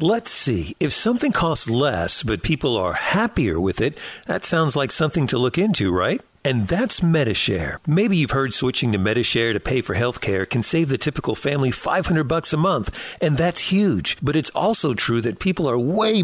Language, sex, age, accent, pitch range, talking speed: English, male, 50-69, American, 120-175 Hz, 200 wpm